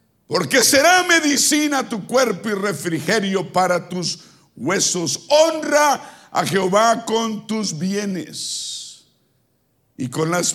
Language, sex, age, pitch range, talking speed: Spanish, male, 50-69, 175-230 Hz, 110 wpm